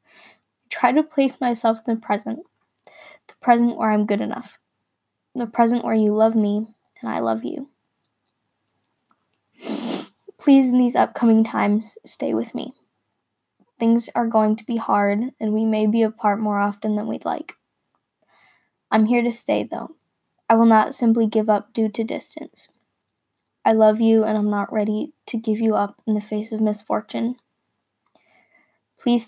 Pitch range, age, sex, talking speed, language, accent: 210-240 Hz, 10-29, female, 160 wpm, English, American